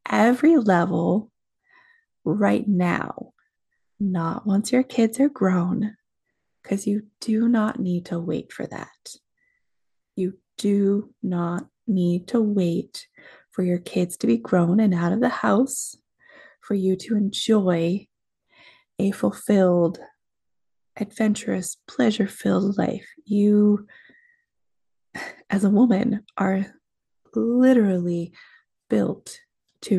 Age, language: 20-39, English